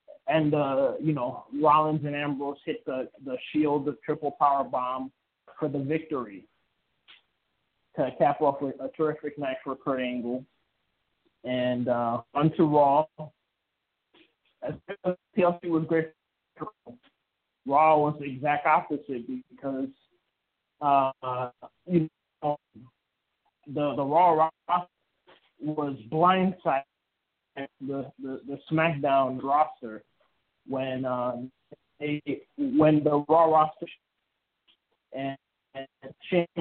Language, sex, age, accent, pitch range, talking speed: English, male, 20-39, American, 135-165 Hz, 110 wpm